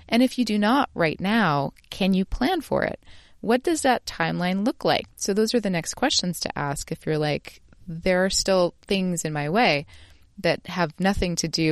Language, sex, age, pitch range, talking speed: English, female, 30-49, 155-200 Hz, 210 wpm